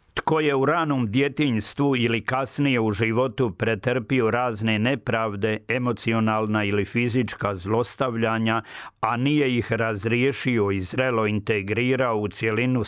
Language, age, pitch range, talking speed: Croatian, 50-69, 110-130 Hz, 115 wpm